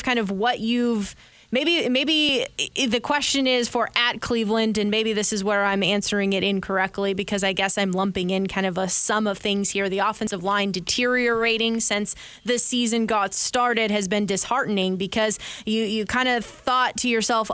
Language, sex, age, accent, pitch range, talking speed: English, female, 20-39, American, 205-245 Hz, 185 wpm